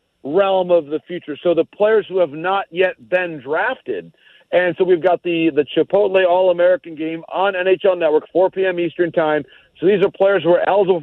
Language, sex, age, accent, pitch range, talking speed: English, male, 40-59, American, 170-200 Hz, 195 wpm